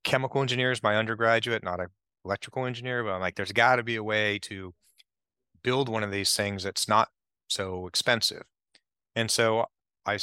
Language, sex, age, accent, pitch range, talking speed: English, male, 30-49, American, 95-115 Hz, 175 wpm